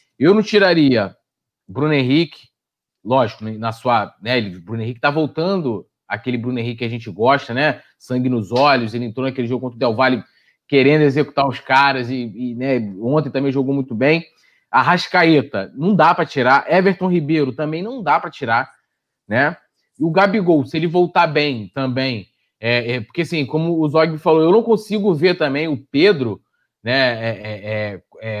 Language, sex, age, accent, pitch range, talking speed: Portuguese, male, 20-39, Brazilian, 125-180 Hz, 185 wpm